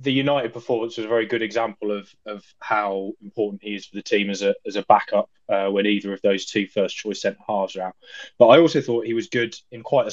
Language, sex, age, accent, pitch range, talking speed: English, male, 20-39, British, 100-120 Hz, 260 wpm